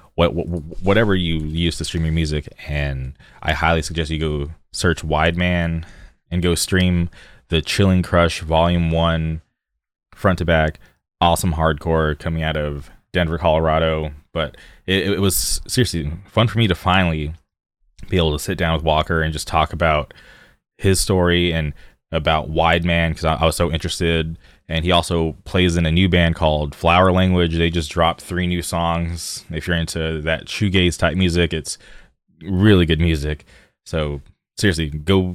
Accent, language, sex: American, English, male